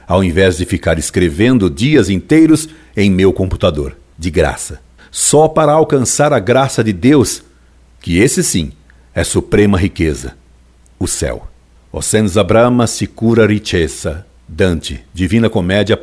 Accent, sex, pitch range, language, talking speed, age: Brazilian, male, 85-120 Hz, Portuguese, 130 wpm, 60-79